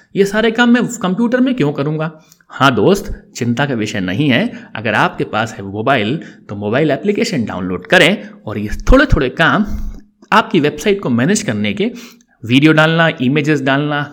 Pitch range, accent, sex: 130-210 Hz, native, male